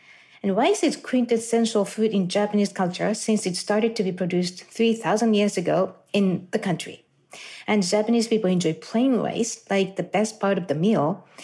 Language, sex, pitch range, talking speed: English, female, 180-220 Hz, 175 wpm